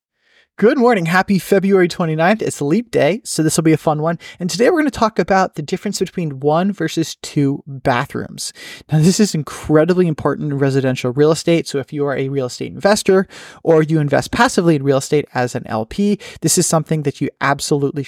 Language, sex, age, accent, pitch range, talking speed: English, male, 30-49, American, 135-175 Hz, 205 wpm